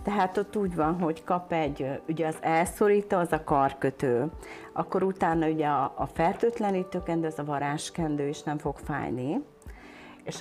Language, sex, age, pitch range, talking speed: Hungarian, female, 40-59, 155-200 Hz, 155 wpm